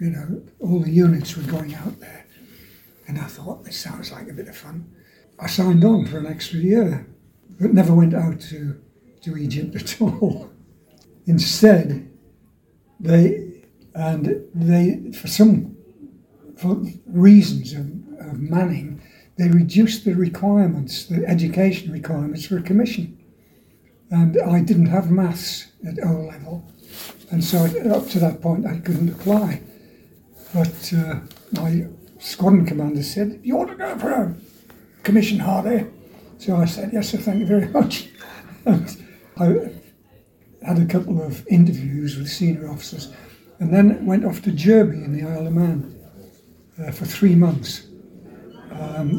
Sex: male